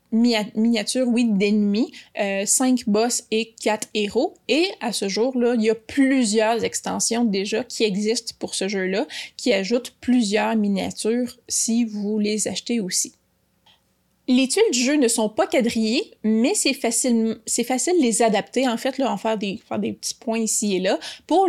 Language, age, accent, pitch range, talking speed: French, 20-39, Canadian, 215-250 Hz, 175 wpm